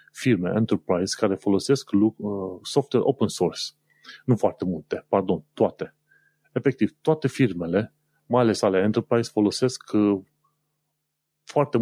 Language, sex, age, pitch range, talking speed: Romanian, male, 30-49, 105-140 Hz, 105 wpm